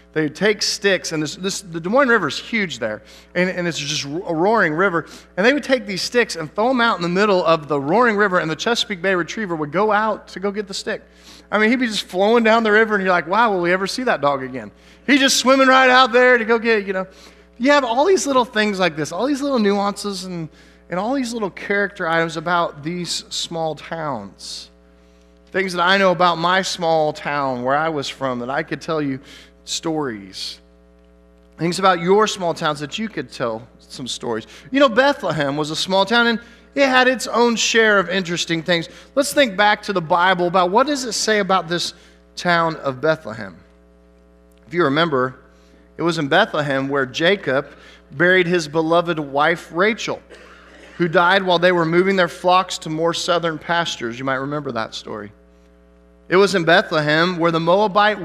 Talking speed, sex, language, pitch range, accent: 210 wpm, male, English, 145-210 Hz, American